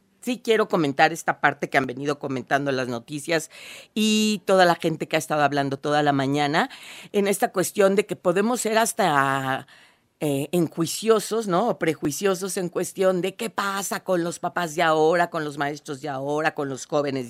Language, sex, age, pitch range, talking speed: Spanish, female, 40-59, 145-200 Hz, 180 wpm